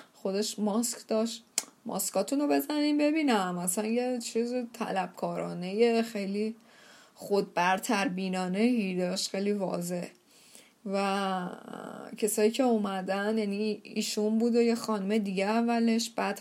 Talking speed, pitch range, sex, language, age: 105 wpm, 195-230 Hz, female, Persian, 10-29